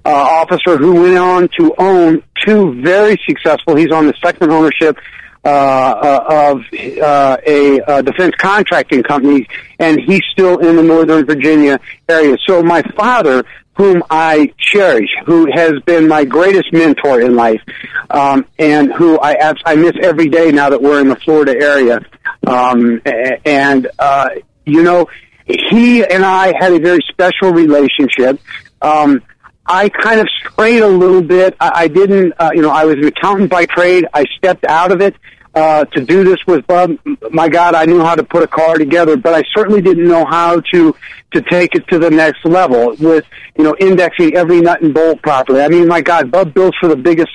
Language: English